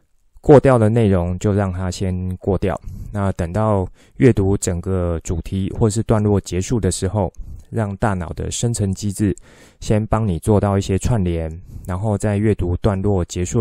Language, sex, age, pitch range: Chinese, male, 20-39, 90-110 Hz